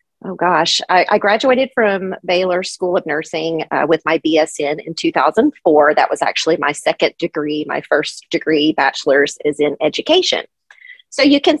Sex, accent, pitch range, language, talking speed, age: female, American, 155-205 Hz, English, 165 wpm, 40-59